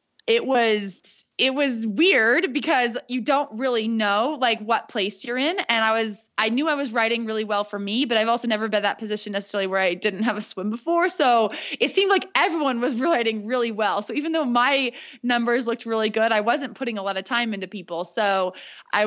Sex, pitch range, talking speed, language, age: female, 205-260 Hz, 220 wpm, English, 20-39